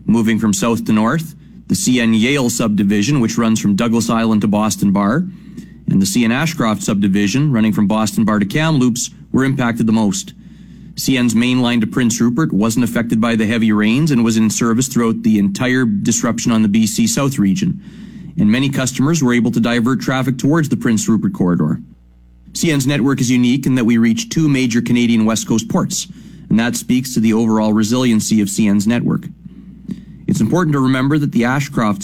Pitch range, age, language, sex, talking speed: 110-165 Hz, 30-49, English, male, 185 wpm